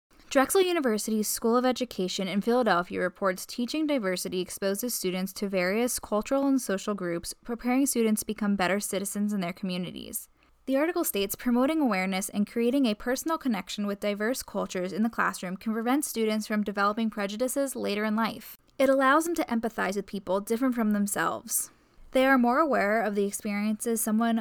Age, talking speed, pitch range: 10-29, 170 wpm, 200-245 Hz